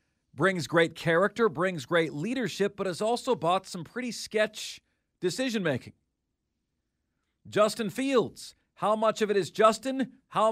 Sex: male